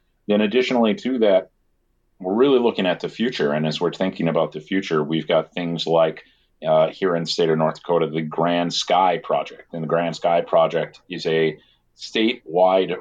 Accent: American